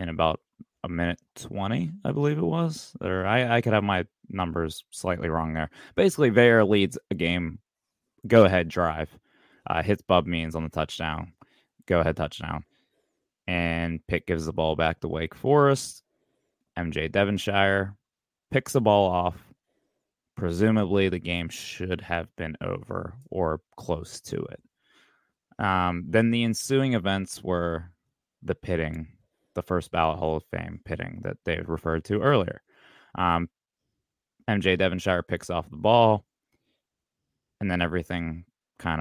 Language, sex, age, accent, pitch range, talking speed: English, male, 20-39, American, 80-100 Hz, 145 wpm